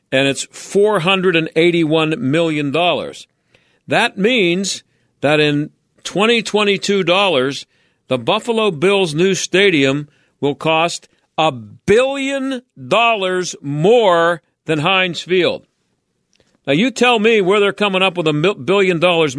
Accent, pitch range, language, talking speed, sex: American, 140-190 Hz, English, 110 wpm, male